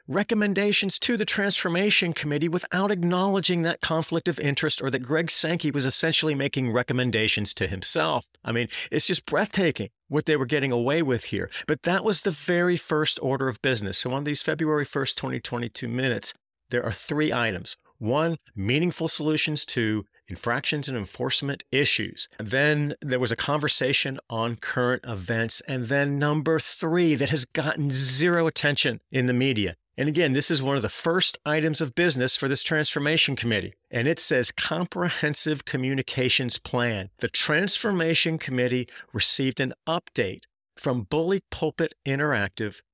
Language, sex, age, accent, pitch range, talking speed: English, male, 50-69, American, 120-160 Hz, 155 wpm